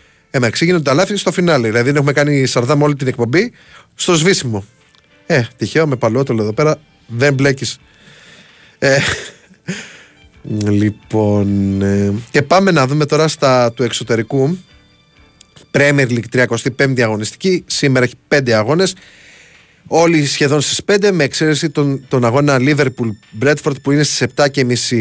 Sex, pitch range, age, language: male, 120-155 Hz, 30-49, Greek